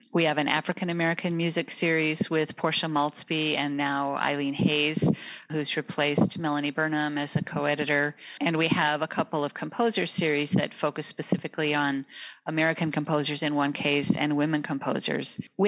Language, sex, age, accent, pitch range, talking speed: English, female, 40-59, American, 150-175 Hz, 155 wpm